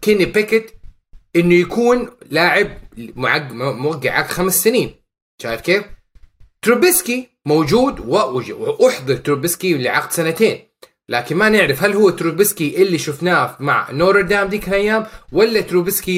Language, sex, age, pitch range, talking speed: Arabic, male, 30-49, 150-220 Hz, 120 wpm